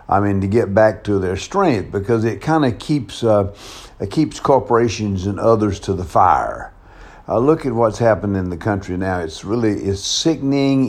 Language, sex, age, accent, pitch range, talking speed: English, male, 60-79, American, 95-110 Hz, 195 wpm